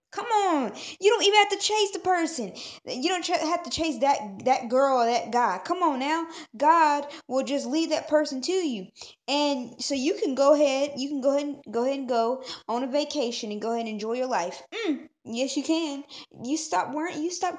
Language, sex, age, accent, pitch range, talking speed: English, female, 20-39, American, 235-310 Hz, 225 wpm